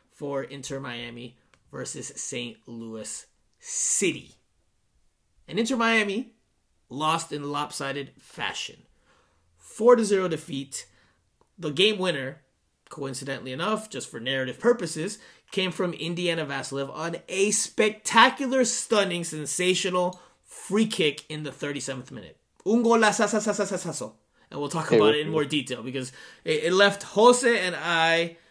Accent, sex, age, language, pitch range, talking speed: American, male, 30-49, English, 135-200 Hz, 115 wpm